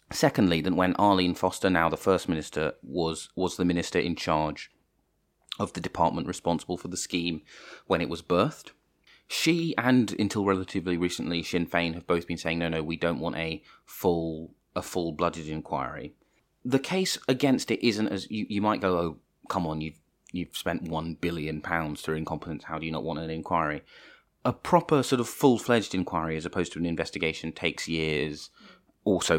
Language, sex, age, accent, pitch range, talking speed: English, male, 30-49, British, 80-100 Hz, 180 wpm